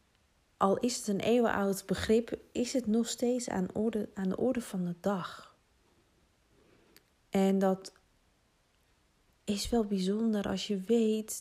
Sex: female